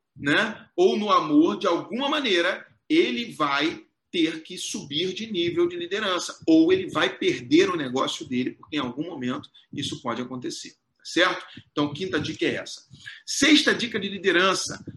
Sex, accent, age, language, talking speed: male, Brazilian, 40-59, Portuguese, 160 wpm